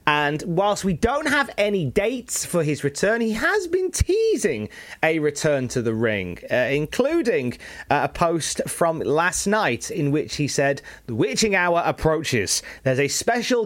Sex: male